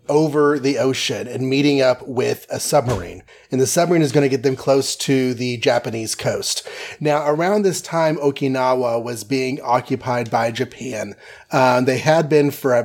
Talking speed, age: 180 wpm, 30-49